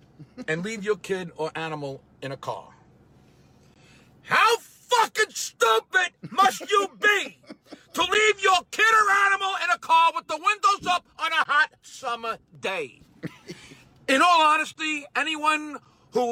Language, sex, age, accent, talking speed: English, male, 50-69, American, 140 wpm